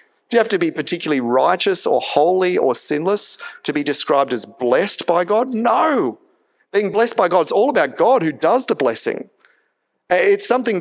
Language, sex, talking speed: English, male, 185 wpm